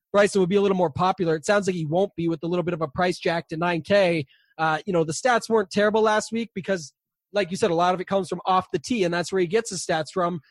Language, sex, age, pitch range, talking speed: English, male, 20-39, 175-205 Hz, 305 wpm